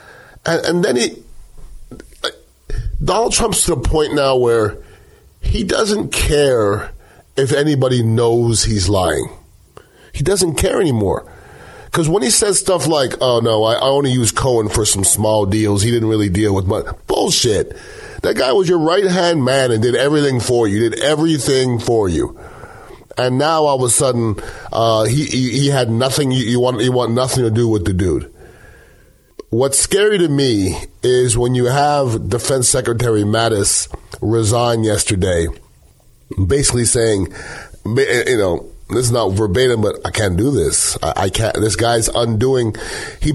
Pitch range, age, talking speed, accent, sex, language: 110-135 Hz, 30-49, 160 wpm, American, male, English